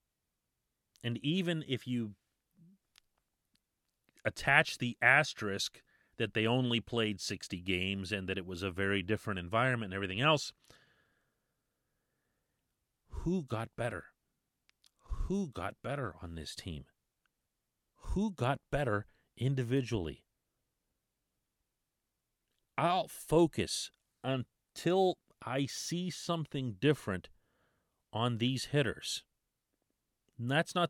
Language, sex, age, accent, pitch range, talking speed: English, male, 40-59, American, 100-130 Hz, 95 wpm